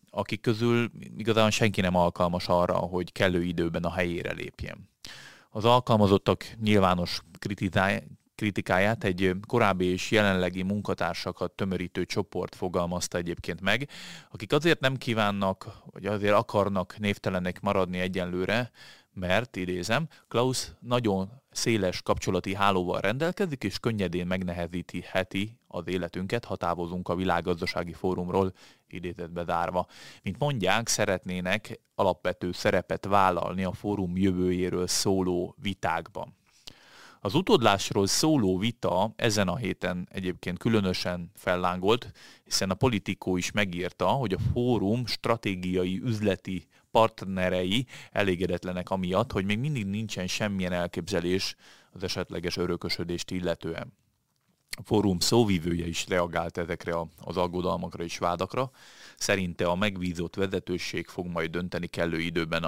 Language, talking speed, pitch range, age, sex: Hungarian, 115 wpm, 90-105 Hz, 30-49, male